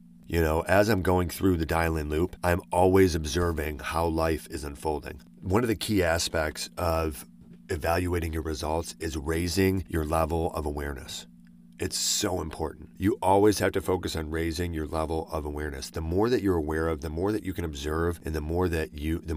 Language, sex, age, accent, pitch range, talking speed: English, male, 40-59, American, 80-90 Hz, 185 wpm